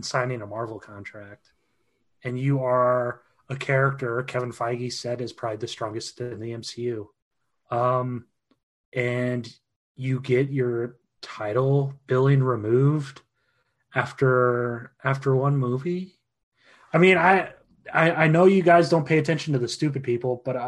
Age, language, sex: 30-49, English, male